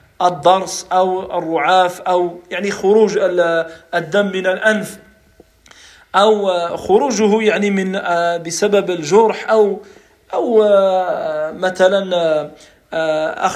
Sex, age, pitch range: male, 50-69, 175-220 Hz